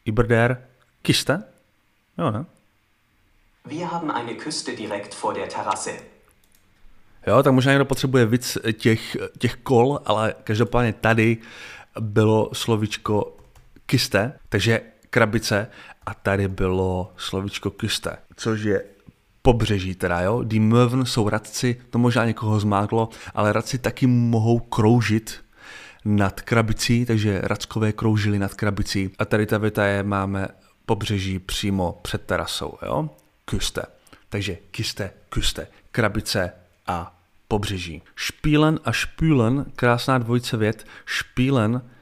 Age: 30-49